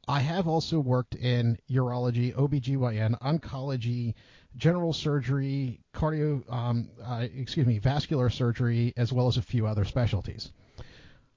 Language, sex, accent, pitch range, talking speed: English, male, American, 115-140 Hz, 125 wpm